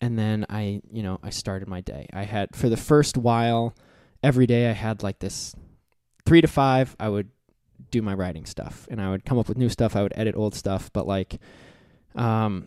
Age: 20-39